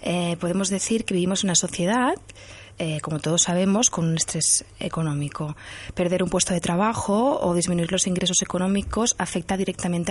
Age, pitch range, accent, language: 20-39, 165-205 Hz, Spanish, Spanish